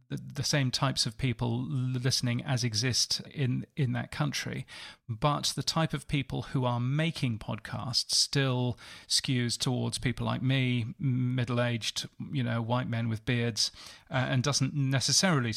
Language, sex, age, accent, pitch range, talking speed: English, male, 40-59, British, 120-145 Hz, 145 wpm